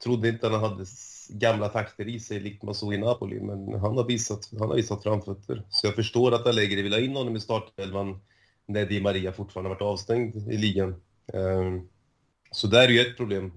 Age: 30-49